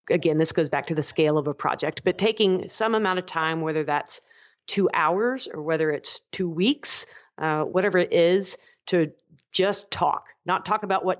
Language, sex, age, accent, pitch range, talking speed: English, female, 40-59, American, 155-190 Hz, 195 wpm